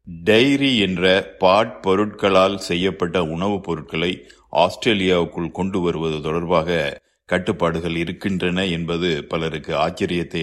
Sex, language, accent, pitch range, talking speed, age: male, Tamil, native, 85-100 Hz, 90 wpm, 50-69